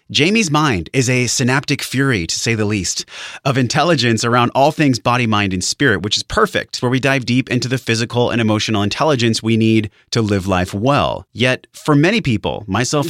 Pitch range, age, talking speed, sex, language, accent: 100-135 Hz, 30-49, 195 wpm, male, English, American